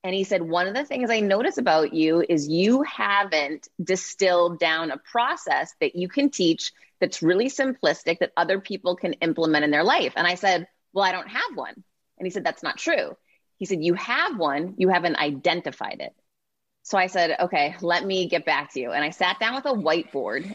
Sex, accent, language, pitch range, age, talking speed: female, American, English, 170-220 Hz, 30-49, 215 wpm